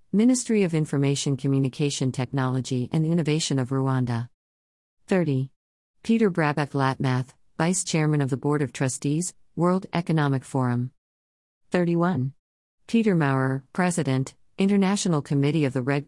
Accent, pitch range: American, 130-160 Hz